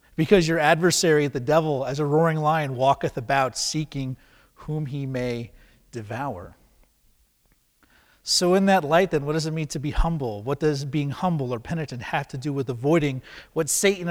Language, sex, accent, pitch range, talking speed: English, male, American, 125-165 Hz, 175 wpm